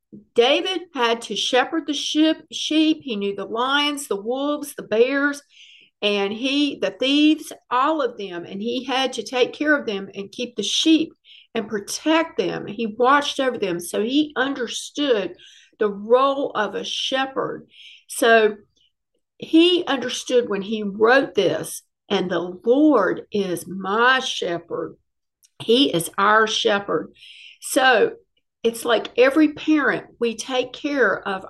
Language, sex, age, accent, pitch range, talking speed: English, female, 50-69, American, 210-295 Hz, 145 wpm